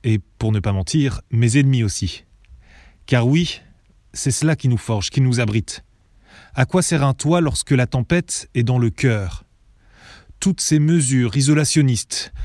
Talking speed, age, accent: 165 wpm, 30-49, French